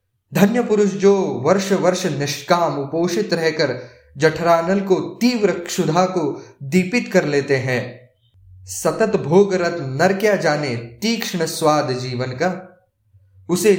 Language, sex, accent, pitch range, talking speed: English, male, Indian, 125-185 Hz, 115 wpm